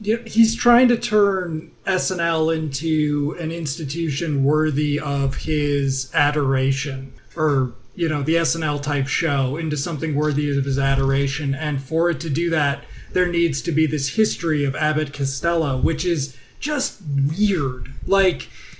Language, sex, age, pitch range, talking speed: English, male, 30-49, 140-180 Hz, 145 wpm